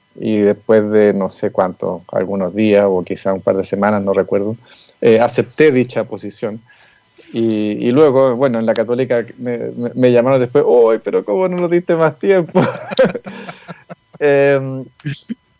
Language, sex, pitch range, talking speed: Spanish, male, 115-140 Hz, 160 wpm